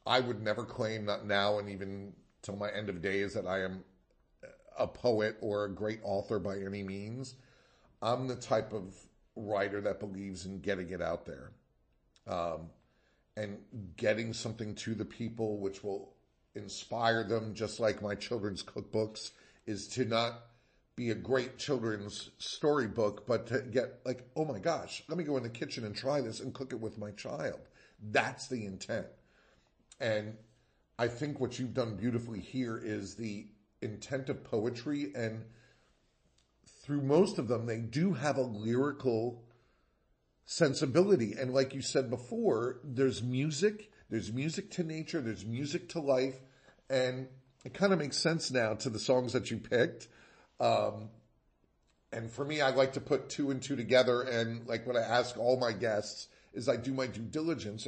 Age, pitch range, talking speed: 50-69, 105-130 Hz, 170 wpm